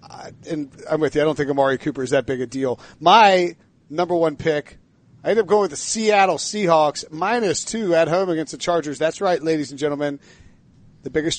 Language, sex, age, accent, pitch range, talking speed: English, male, 40-59, American, 155-200 Hz, 210 wpm